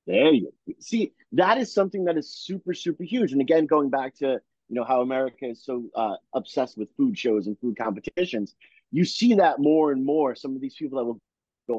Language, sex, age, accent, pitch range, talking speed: English, male, 30-49, American, 125-175 Hz, 225 wpm